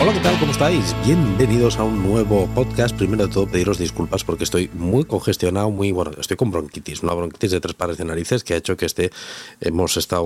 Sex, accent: male, Spanish